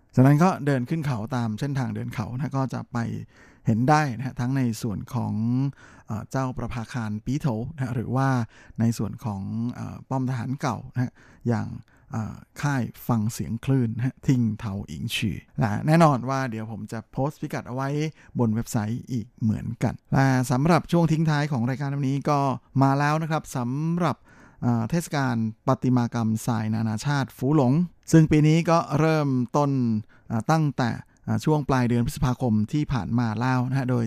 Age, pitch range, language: 20-39, 115-140 Hz, Thai